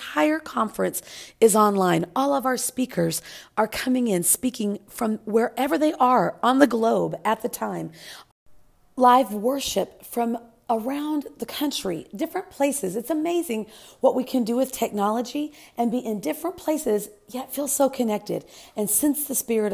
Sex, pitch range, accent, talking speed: female, 210-275 Hz, American, 155 wpm